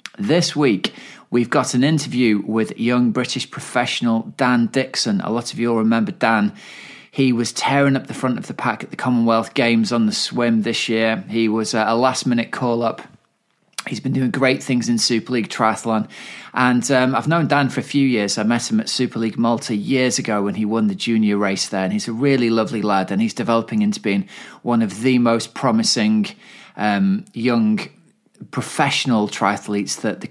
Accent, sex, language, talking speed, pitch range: British, male, English, 200 wpm, 105-130 Hz